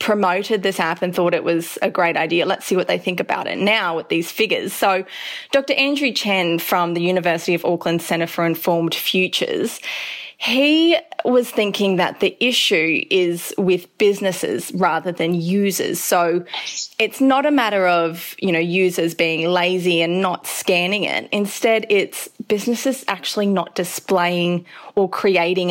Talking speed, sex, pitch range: 160 wpm, female, 170-215 Hz